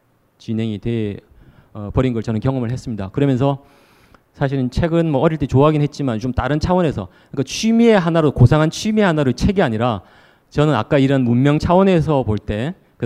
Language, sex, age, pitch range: Korean, male, 30-49, 105-140 Hz